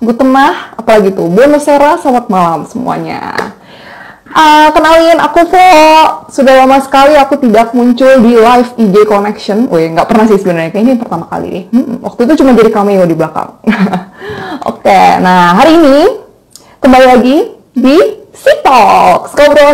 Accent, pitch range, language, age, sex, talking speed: native, 195-285 Hz, Indonesian, 20-39, female, 150 wpm